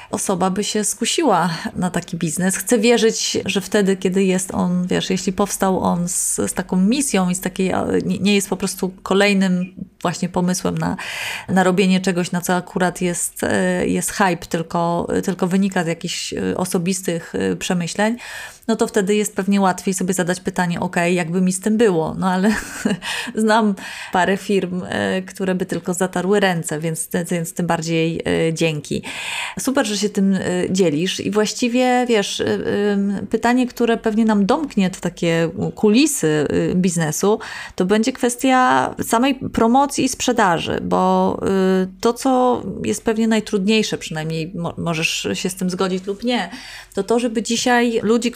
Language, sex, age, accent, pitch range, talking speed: Polish, female, 30-49, native, 180-220 Hz, 150 wpm